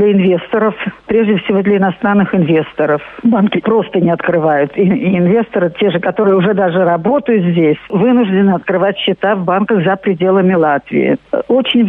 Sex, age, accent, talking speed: female, 50-69, native, 145 wpm